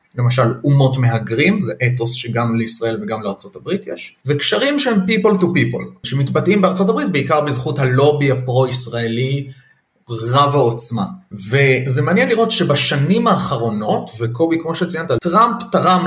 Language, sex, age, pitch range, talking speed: Hebrew, male, 30-49, 125-190 Hz, 125 wpm